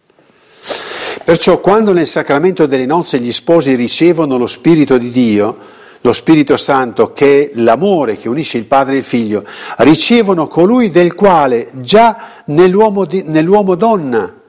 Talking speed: 135 wpm